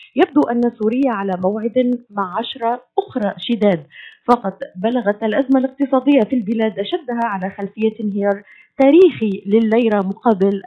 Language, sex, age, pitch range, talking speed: Arabic, female, 30-49, 200-255 Hz, 125 wpm